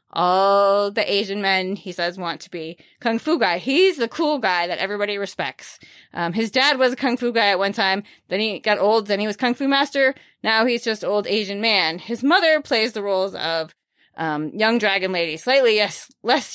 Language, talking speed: English, 215 wpm